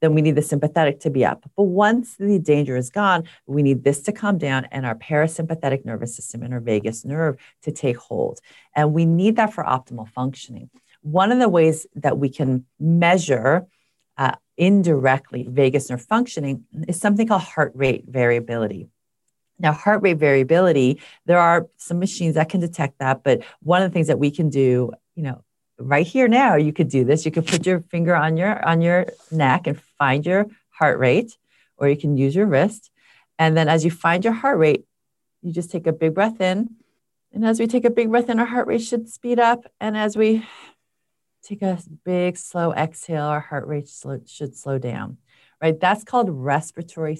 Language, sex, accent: English, female, American